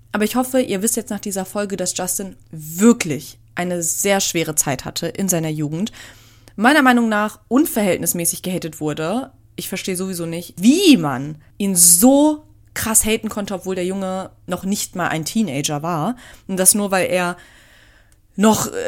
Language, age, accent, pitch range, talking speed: German, 30-49, German, 170-225 Hz, 165 wpm